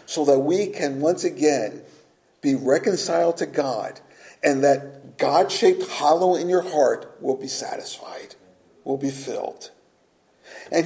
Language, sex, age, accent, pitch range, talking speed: English, male, 50-69, American, 150-205 Hz, 135 wpm